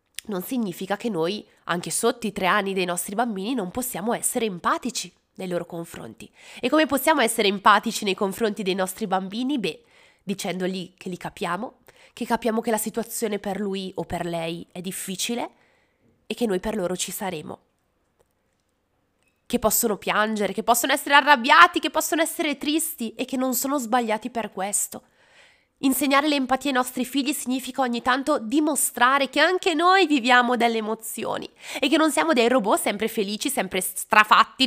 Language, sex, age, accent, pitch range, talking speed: Italian, female, 20-39, native, 200-265 Hz, 165 wpm